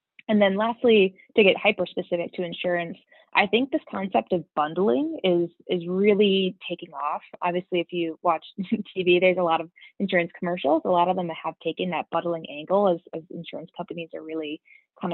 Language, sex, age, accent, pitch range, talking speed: English, female, 20-39, American, 165-195 Hz, 185 wpm